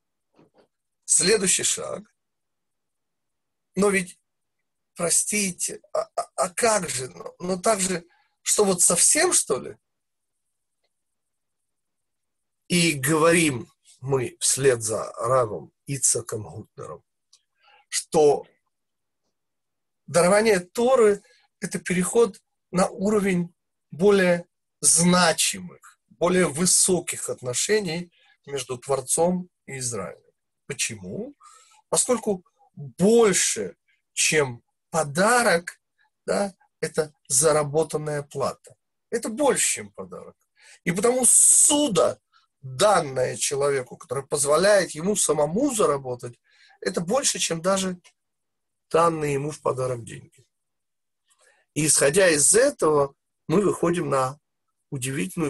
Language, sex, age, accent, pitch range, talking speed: Russian, male, 40-59, native, 150-210 Hz, 90 wpm